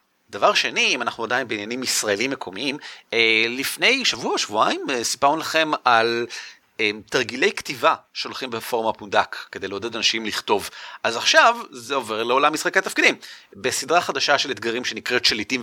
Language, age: Hebrew, 30-49